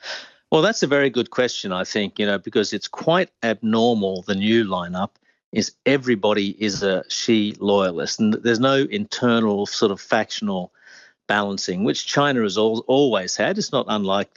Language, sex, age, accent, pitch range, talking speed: English, male, 50-69, Australian, 100-115 Hz, 165 wpm